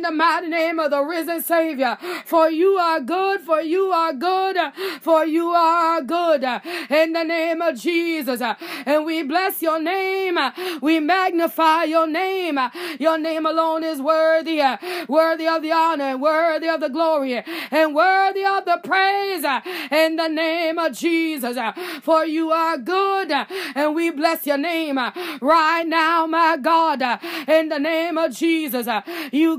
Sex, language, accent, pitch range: female, English, American, 305-335 Hz